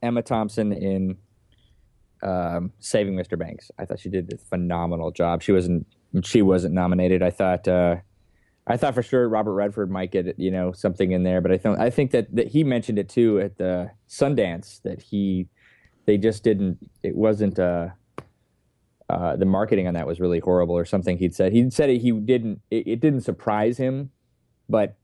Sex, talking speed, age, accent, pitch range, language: male, 190 wpm, 20-39, American, 90-115 Hz, English